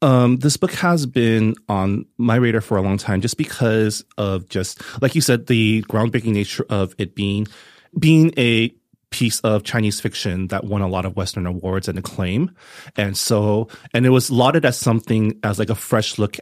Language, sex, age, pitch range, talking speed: English, male, 30-49, 100-125 Hz, 195 wpm